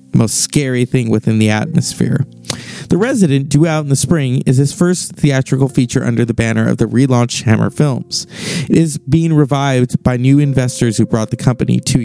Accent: American